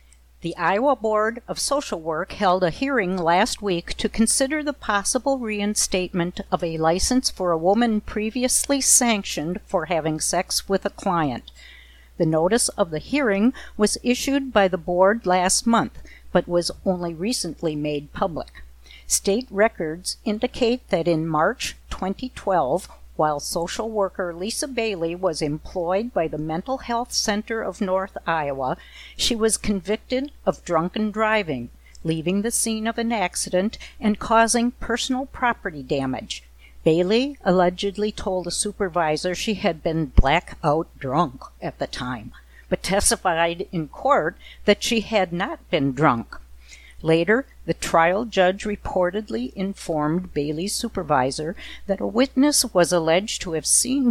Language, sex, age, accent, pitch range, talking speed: English, female, 50-69, American, 160-220 Hz, 140 wpm